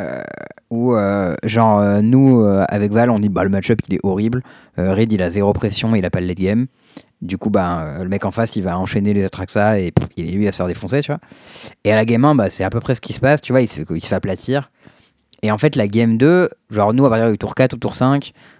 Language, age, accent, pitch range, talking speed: French, 20-39, French, 100-125 Hz, 290 wpm